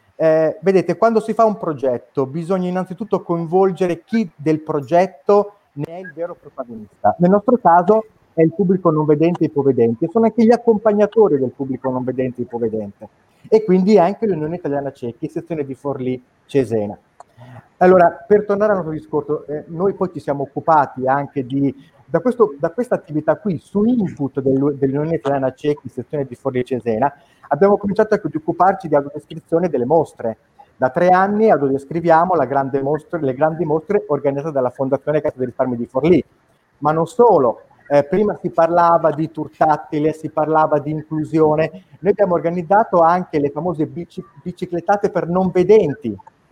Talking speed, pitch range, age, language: 160 wpm, 140-185 Hz, 30-49, Italian